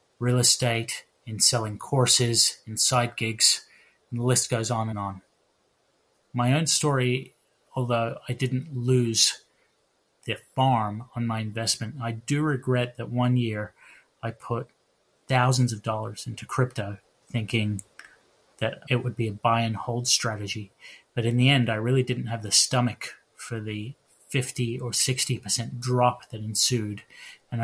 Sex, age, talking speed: male, 30-49, 150 wpm